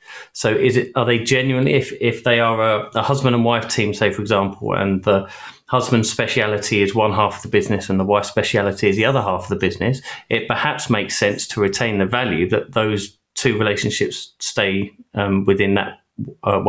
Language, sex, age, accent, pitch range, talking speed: English, male, 30-49, British, 100-125 Hz, 205 wpm